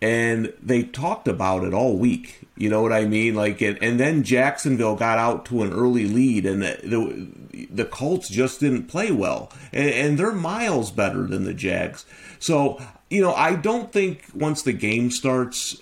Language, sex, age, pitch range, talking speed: English, male, 30-49, 105-145 Hz, 190 wpm